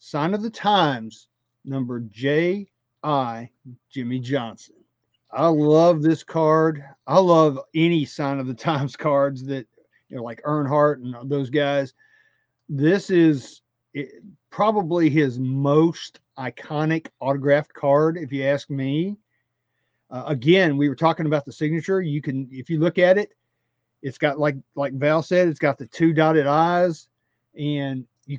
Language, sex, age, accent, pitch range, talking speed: English, male, 50-69, American, 135-165 Hz, 150 wpm